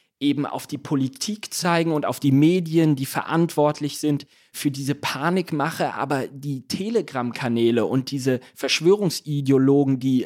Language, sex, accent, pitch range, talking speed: German, male, German, 130-160 Hz, 130 wpm